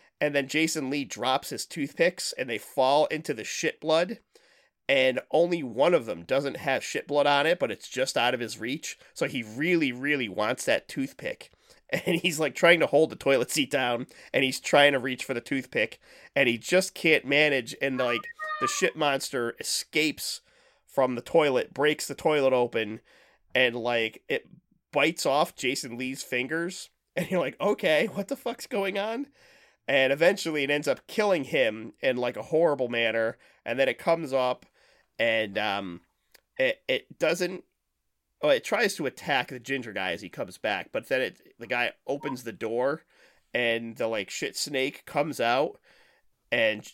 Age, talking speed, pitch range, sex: 30-49, 185 wpm, 125-175 Hz, male